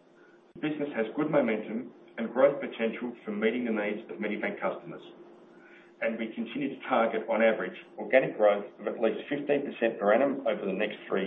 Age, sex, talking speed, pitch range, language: 50-69, male, 185 wpm, 110-125 Hz, English